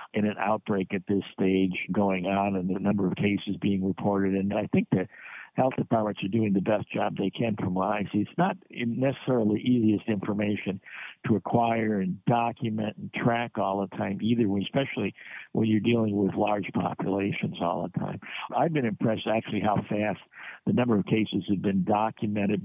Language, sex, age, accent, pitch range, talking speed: English, male, 60-79, American, 100-115 Hz, 185 wpm